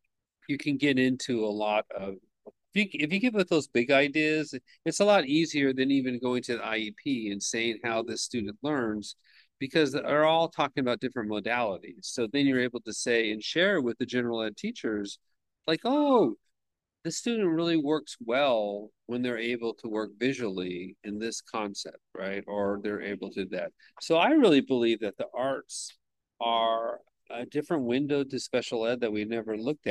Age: 40-59